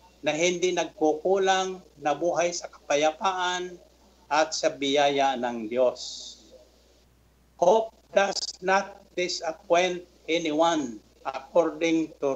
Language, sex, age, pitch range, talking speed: Filipino, male, 60-79, 140-180 Hz, 90 wpm